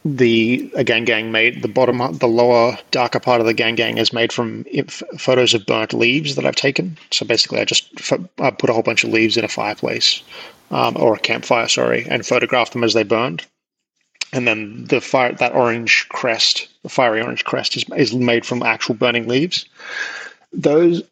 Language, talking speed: English, 195 wpm